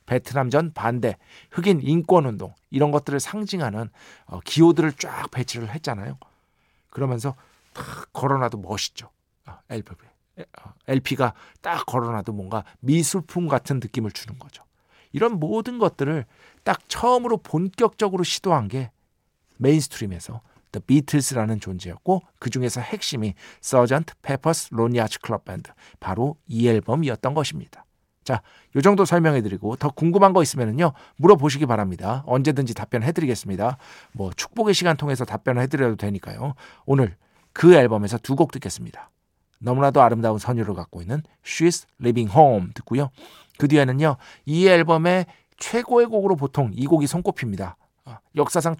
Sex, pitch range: male, 115-165 Hz